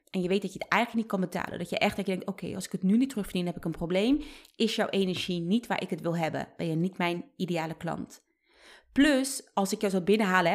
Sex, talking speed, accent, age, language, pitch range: female, 260 wpm, Dutch, 30-49, Dutch, 185-235 Hz